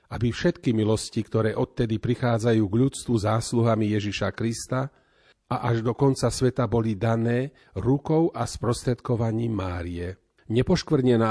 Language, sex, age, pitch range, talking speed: Slovak, male, 40-59, 110-130 Hz, 120 wpm